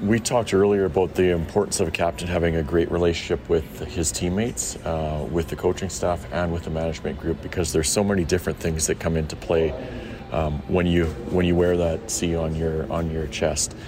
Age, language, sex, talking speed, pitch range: 40-59, English, male, 210 wpm, 80-90 Hz